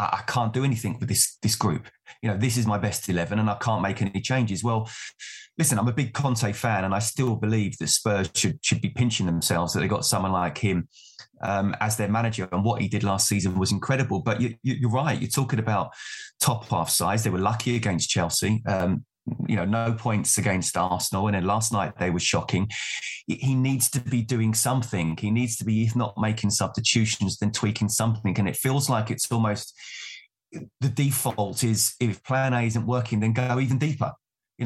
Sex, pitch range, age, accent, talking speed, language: male, 105-130 Hz, 20-39, British, 215 wpm, English